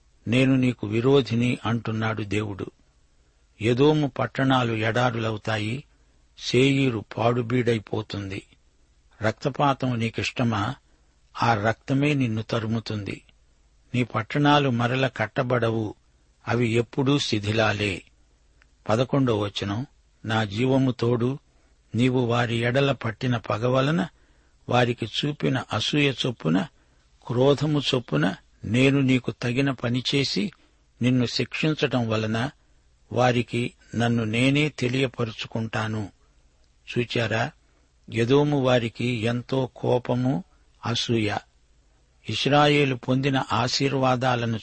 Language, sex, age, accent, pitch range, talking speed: Telugu, male, 60-79, native, 100-130 Hz, 80 wpm